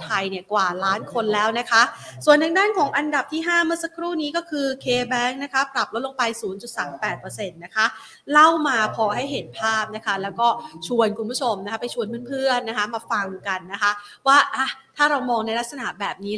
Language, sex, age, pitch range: Thai, female, 30-49, 200-250 Hz